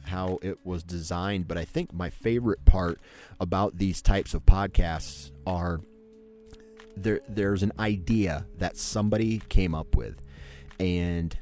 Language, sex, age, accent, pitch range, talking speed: English, male, 30-49, American, 80-95 Hz, 135 wpm